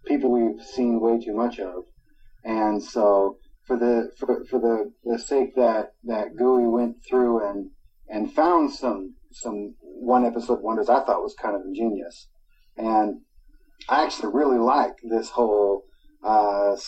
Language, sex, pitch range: English, male, 110-125 Hz